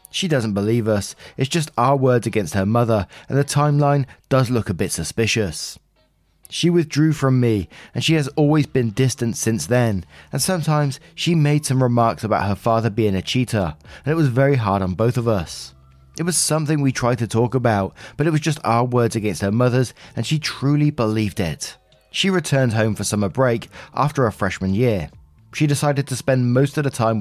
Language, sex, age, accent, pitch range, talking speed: English, male, 20-39, British, 105-140 Hz, 205 wpm